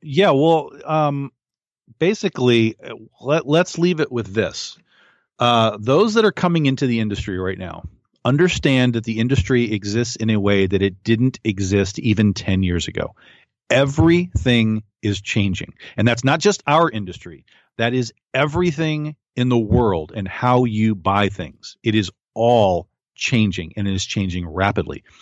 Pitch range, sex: 100-125 Hz, male